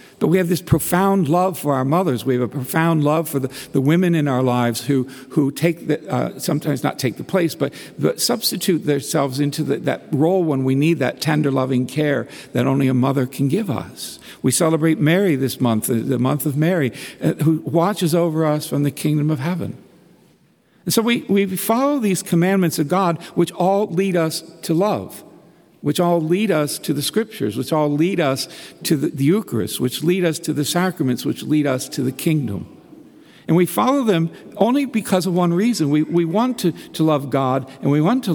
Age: 60-79